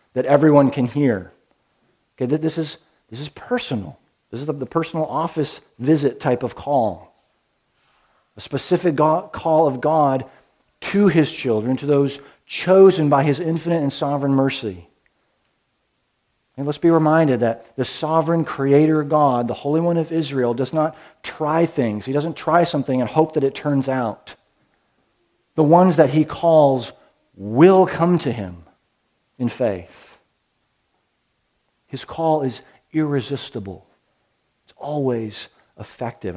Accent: American